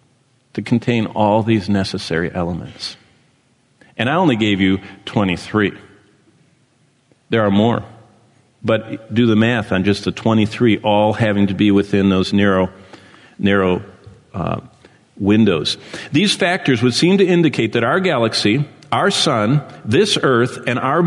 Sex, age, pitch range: male, 50-69, 105-145 Hz